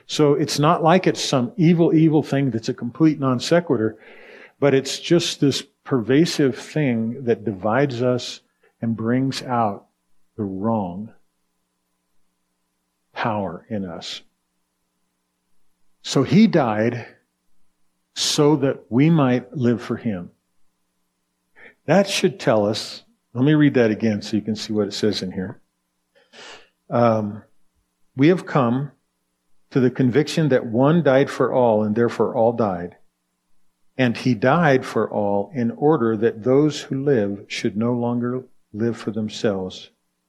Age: 50-69